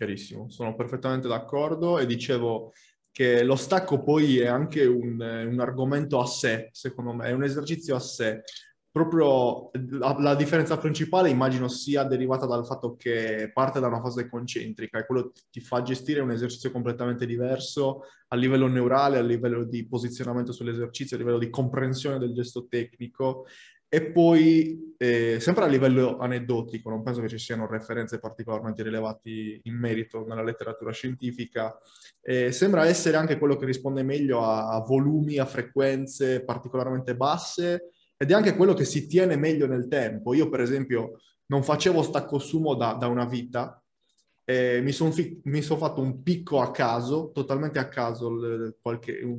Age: 20-39